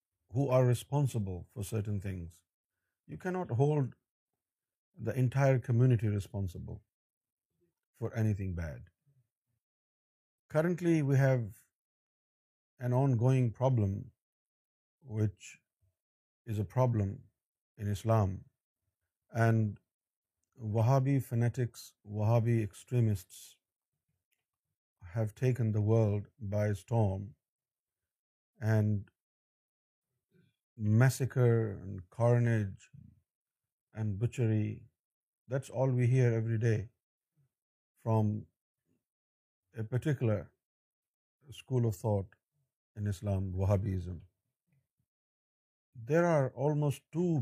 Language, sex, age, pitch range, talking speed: Urdu, male, 50-69, 100-130 Hz, 80 wpm